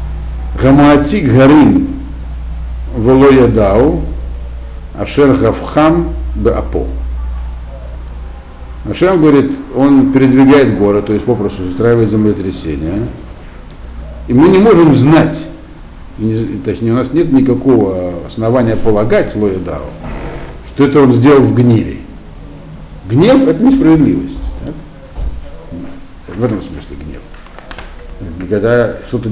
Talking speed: 85 wpm